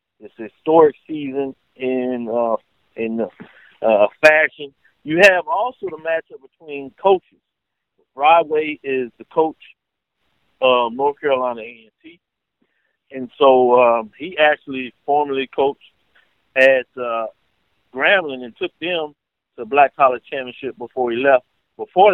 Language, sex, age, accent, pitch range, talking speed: English, male, 50-69, American, 120-150 Hz, 125 wpm